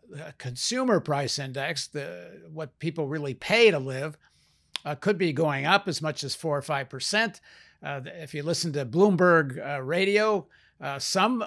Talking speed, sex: 165 wpm, male